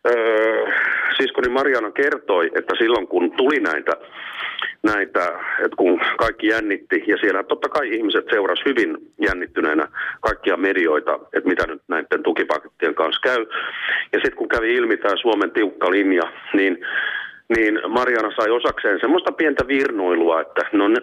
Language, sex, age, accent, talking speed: Finnish, male, 40-59, native, 145 wpm